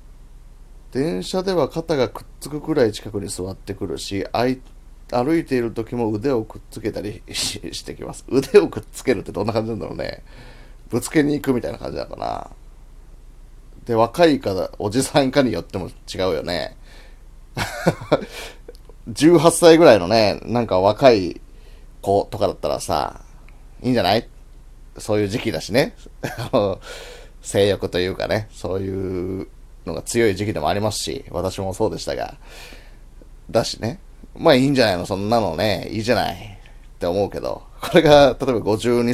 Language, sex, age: Japanese, male, 30-49